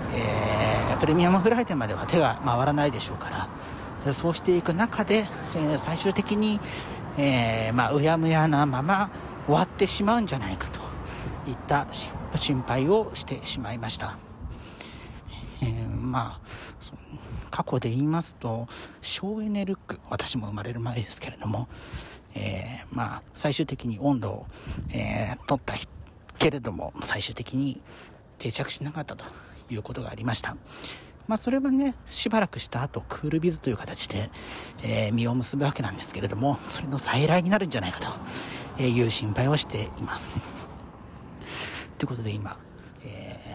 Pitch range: 110-155 Hz